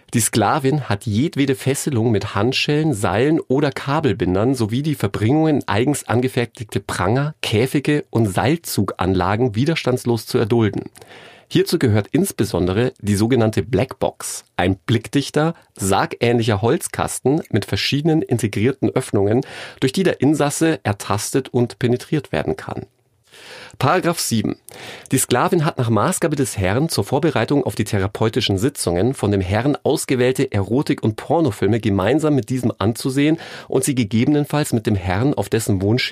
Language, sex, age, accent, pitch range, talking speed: German, male, 40-59, German, 105-140 Hz, 135 wpm